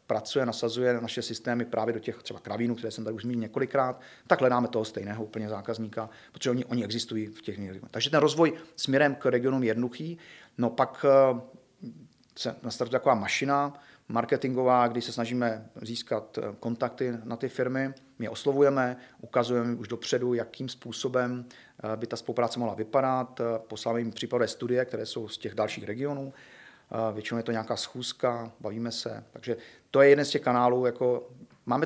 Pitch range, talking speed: 115-125 Hz, 170 wpm